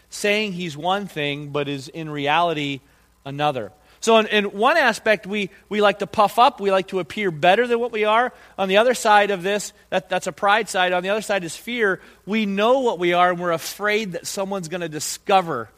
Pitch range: 180-220 Hz